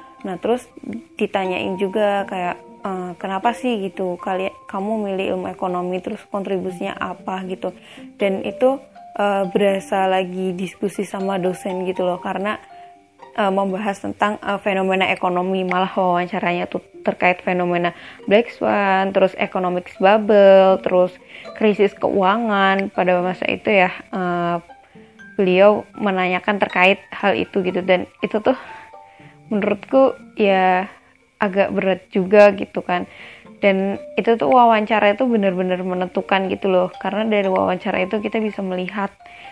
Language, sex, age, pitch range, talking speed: Indonesian, female, 20-39, 185-210 Hz, 130 wpm